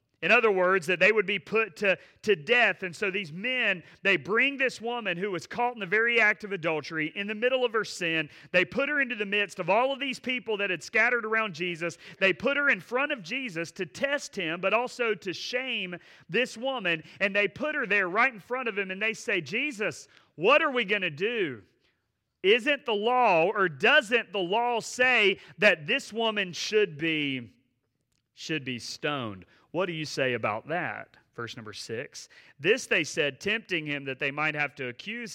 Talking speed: 205 wpm